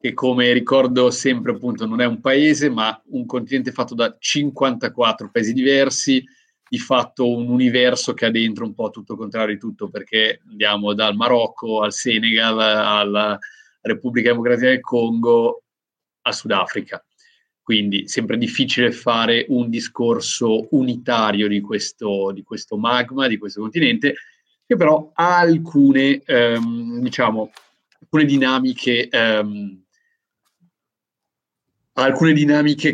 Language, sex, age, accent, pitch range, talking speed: Italian, male, 30-49, native, 110-155 Hz, 130 wpm